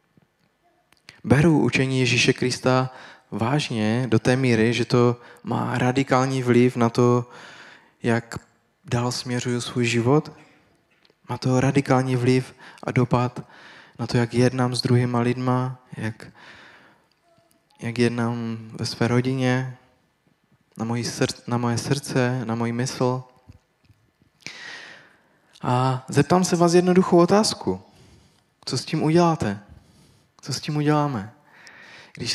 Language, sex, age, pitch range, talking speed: Czech, male, 20-39, 115-130 Hz, 115 wpm